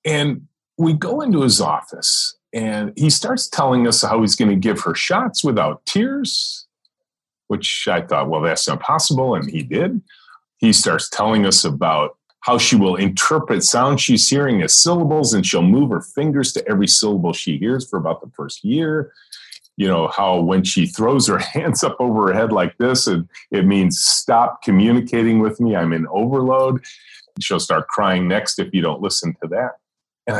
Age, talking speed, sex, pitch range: 40-59, 185 wpm, male, 95-150 Hz